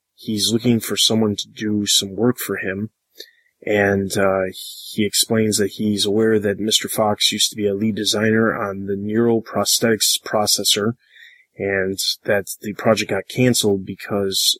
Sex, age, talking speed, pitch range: male, 20-39, 150 wpm, 100-115 Hz